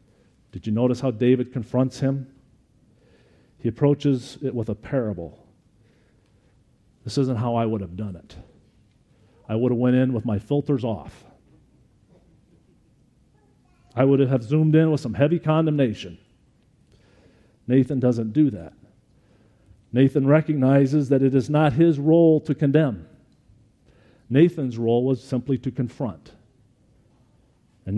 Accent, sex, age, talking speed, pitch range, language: American, male, 50-69, 130 wpm, 115-140 Hz, English